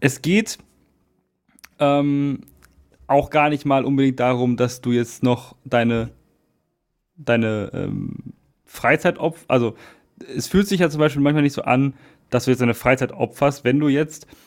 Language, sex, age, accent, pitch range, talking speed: German, male, 30-49, German, 130-160 Hz, 160 wpm